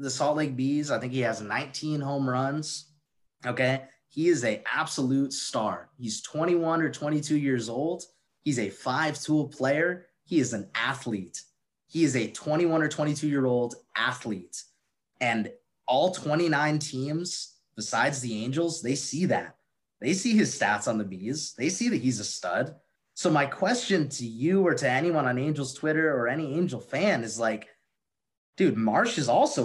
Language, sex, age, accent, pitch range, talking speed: English, male, 20-39, American, 125-165 Hz, 170 wpm